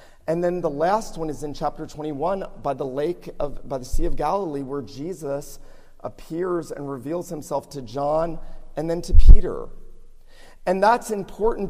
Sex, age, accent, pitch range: male, 40-59, American, 125-160 Hz